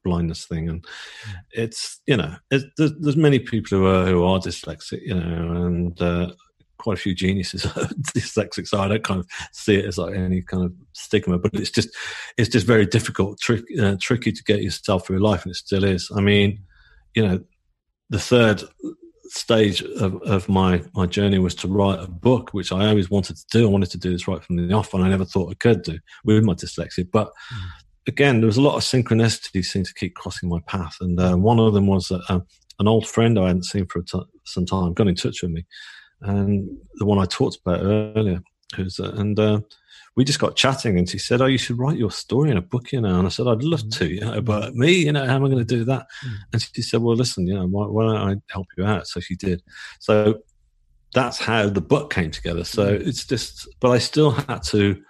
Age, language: 40-59, English